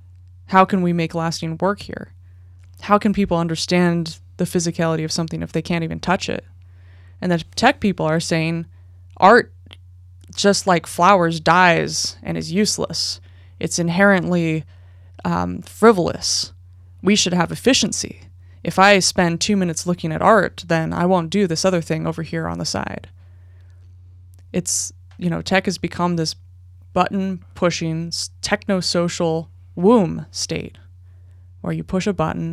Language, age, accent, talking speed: English, 20-39, American, 145 wpm